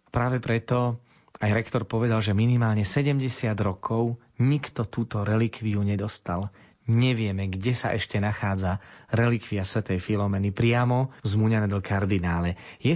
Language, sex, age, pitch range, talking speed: Slovak, male, 30-49, 105-120 Hz, 125 wpm